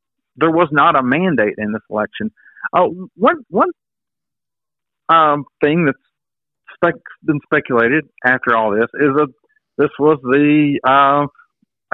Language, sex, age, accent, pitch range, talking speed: English, male, 40-59, American, 120-155 Hz, 125 wpm